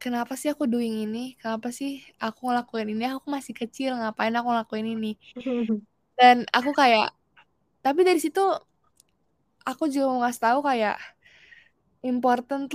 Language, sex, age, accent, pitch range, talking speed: Indonesian, female, 10-29, native, 220-270 Hz, 140 wpm